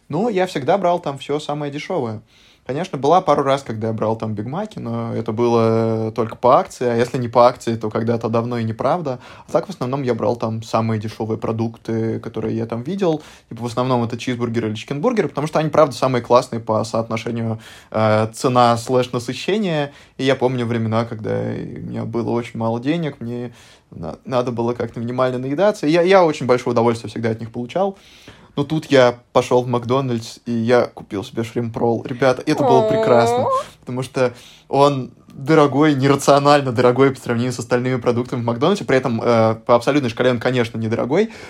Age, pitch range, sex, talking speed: 20-39, 115-135 Hz, male, 190 wpm